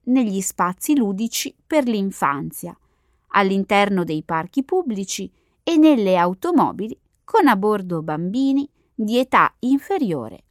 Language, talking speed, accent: Italian, 110 wpm, native